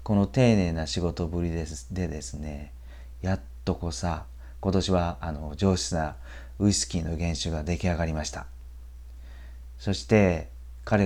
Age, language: 40-59, Japanese